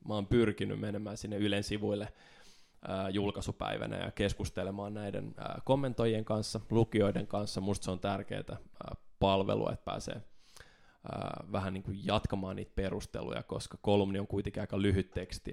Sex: male